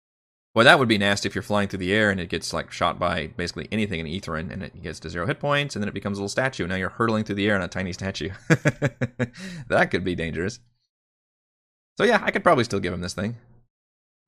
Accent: American